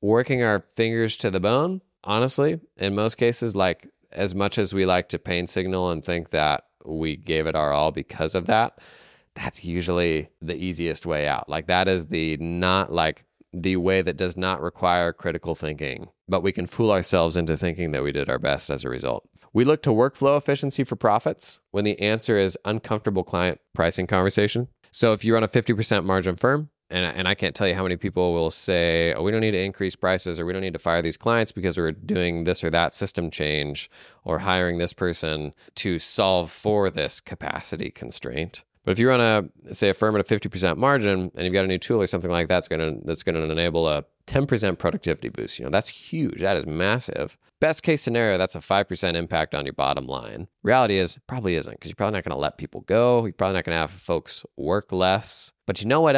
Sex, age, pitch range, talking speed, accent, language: male, 20-39, 85-110 Hz, 220 wpm, American, English